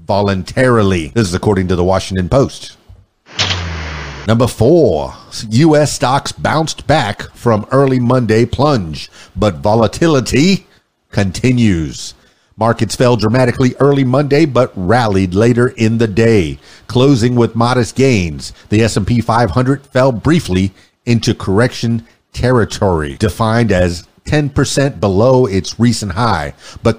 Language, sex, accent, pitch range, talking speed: English, male, American, 105-130 Hz, 115 wpm